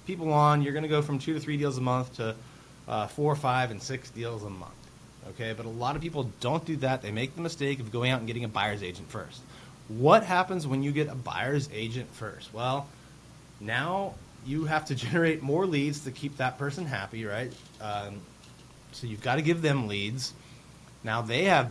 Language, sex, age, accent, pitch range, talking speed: English, male, 30-49, American, 115-155 Hz, 215 wpm